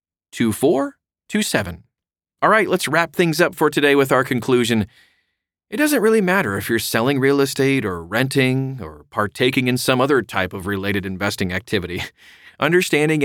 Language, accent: English, American